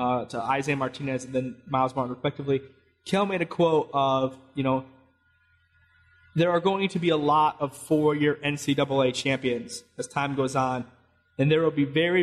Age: 20-39